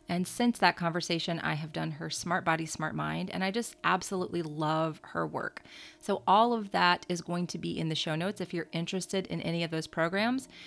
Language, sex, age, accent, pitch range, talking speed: English, female, 30-49, American, 160-185 Hz, 220 wpm